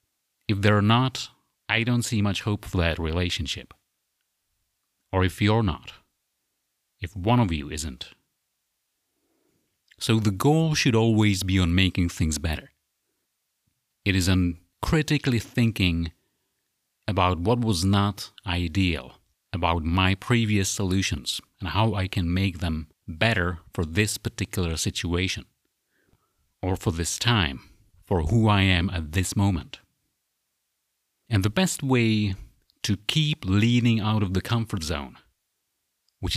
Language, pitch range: English, 90-110 Hz